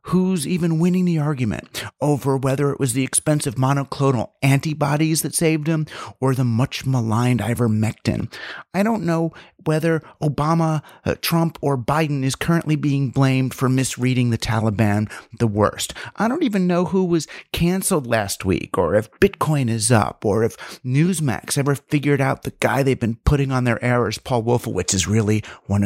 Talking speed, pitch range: 165 wpm, 115-145 Hz